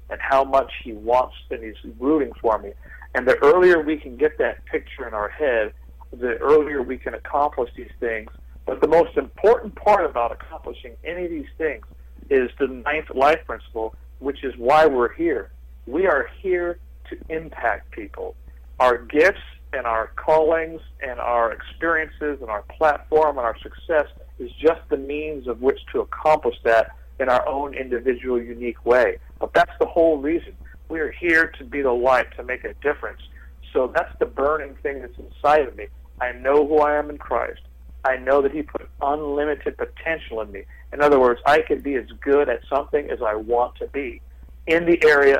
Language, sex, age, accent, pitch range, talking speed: English, male, 60-79, American, 105-160 Hz, 190 wpm